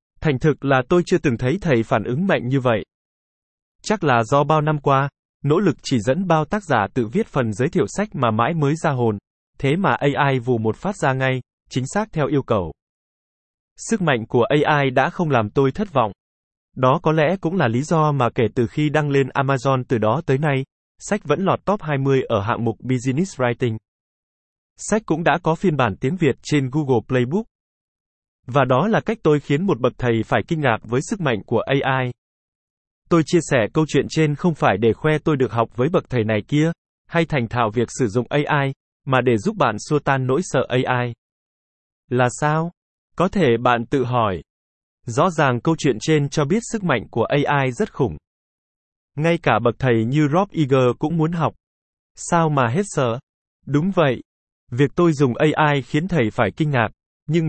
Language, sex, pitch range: Vietnamese, male, 120-155 Hz